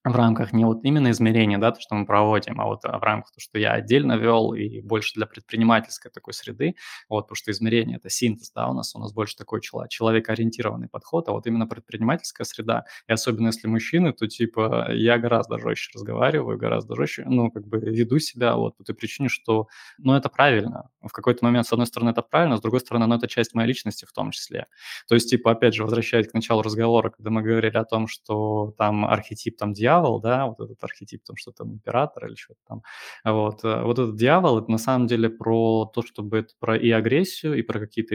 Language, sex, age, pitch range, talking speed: Russian, male, 20-39, 110-120 Hz, 220 wpm